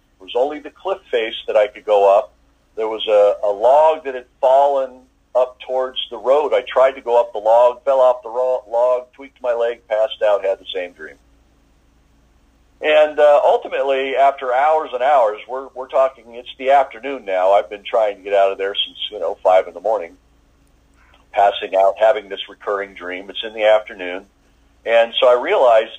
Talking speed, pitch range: 200 wpm, 90-125 Hz